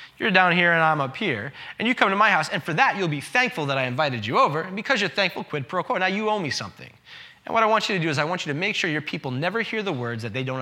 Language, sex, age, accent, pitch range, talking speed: English, male, 20-39, American, 145-210 Hz, 335 wpm